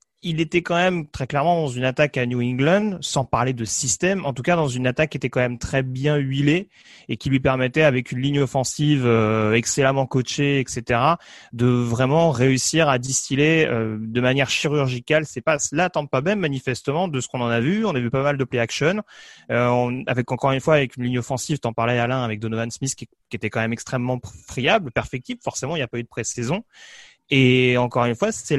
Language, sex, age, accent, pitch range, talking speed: French, male, 30-49, French, 120-150 Hz, 225 wpm